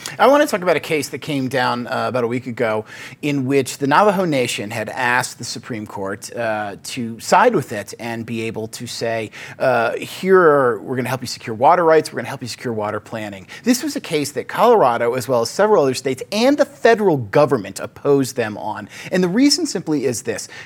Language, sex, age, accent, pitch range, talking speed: English, male, 30-49, American, 120-180 Hz, 225 wpm